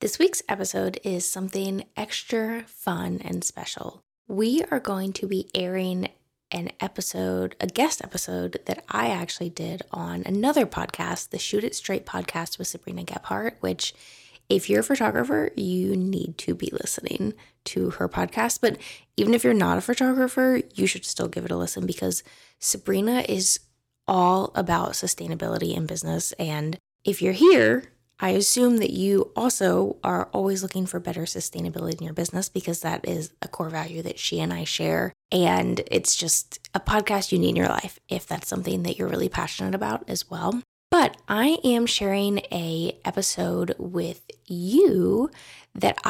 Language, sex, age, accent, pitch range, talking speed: English, female, 10-29, American, 150-210 Hz, 165 wpm